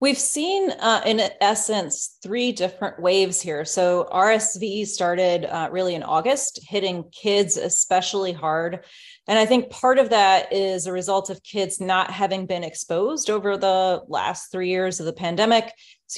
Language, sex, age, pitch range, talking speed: English, female, 30-49, 175-210 Hz, 165 wpm